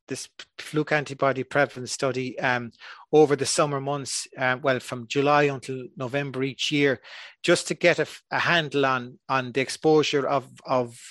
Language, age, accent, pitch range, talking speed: English, 30-49, Irish, 125-150 Hz, 155 wpm